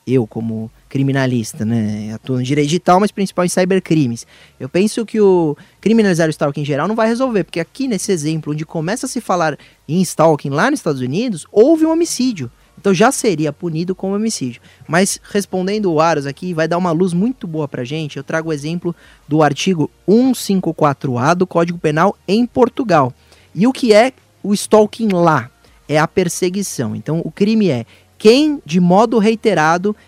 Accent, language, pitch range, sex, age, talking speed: Brazilian, Portuguese, 155-210 Hz, male, 20-39, 180 wpm